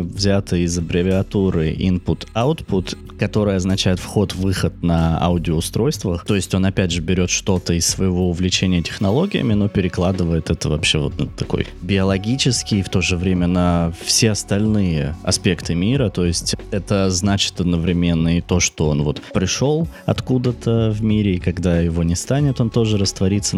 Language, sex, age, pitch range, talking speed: Russian, male, 20-39, 90-105 Hz, 155 wpm